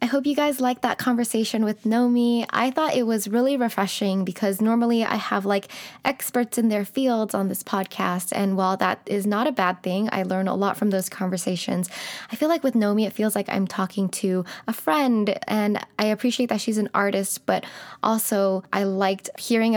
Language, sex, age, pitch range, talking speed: English, female, 10-29, 190-230 Hz, 205 wpm